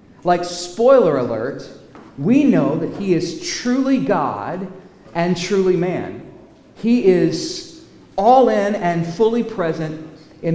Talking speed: 120 wpm